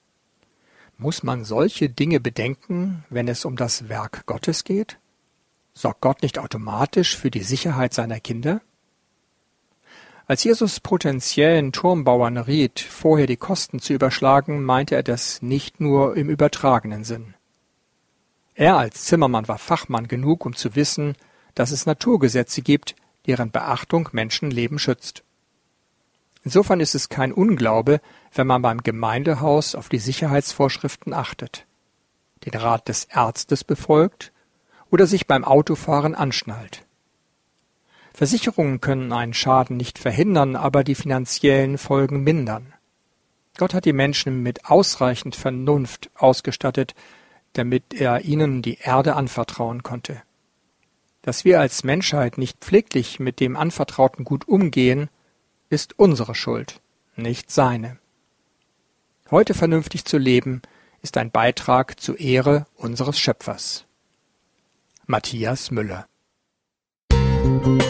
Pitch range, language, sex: 125-150 Hz, German, male